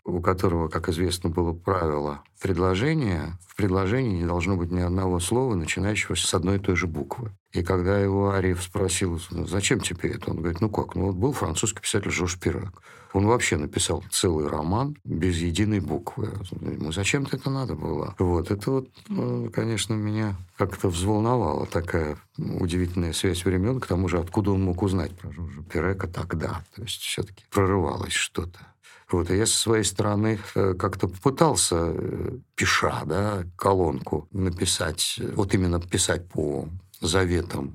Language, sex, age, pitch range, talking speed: Russian, male, 50-69, 90-105 Hz, 155 wpm